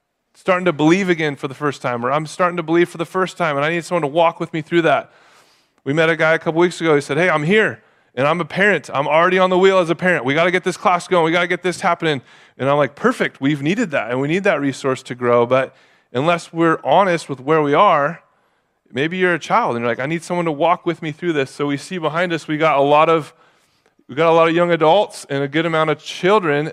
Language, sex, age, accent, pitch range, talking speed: English, male, 30-49, American, 150-180 Hz, 285 wpm